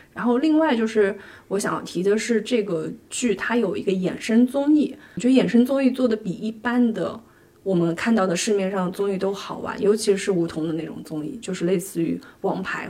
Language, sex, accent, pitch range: Chinese, female, native, 195-235 Hz